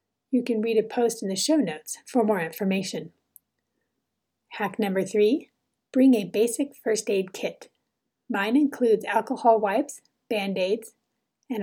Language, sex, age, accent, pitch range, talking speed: English, female, 30-49, American, 200-250 Hz, 140 wpm